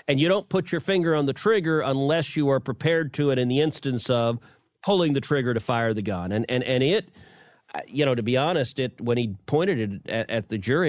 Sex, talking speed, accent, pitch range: male, 240 wpm, American, 120-165 Hz